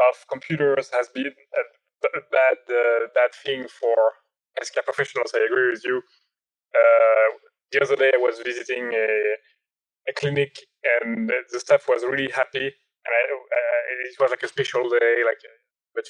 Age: 20-39